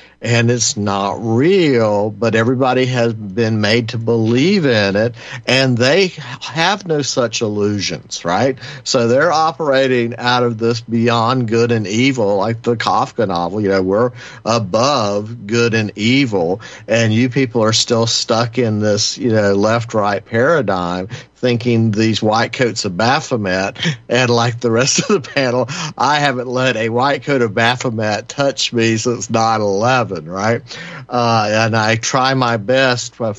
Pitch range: 110-130 Hz